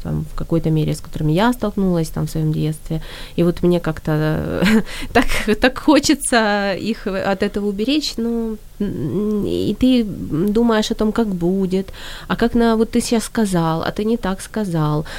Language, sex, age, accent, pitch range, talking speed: Ukrainian, female, 20-39, native, 170-230 Hz, 160 wpm